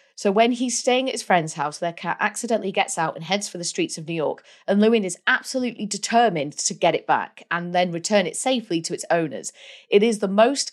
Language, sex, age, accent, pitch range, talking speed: English, female, 30-49, British, 170-220 Hz, 235 wpm